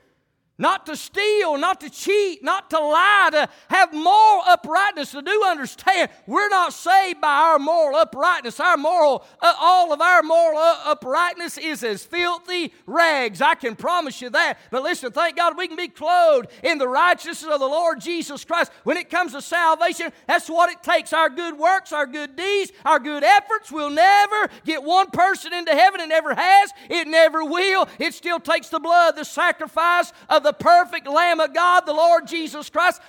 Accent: American